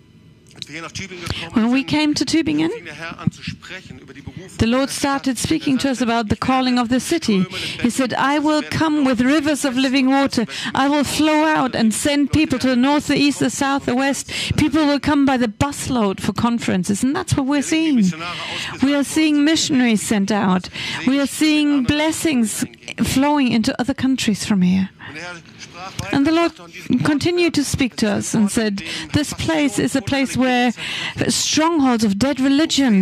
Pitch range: 225-300 Hz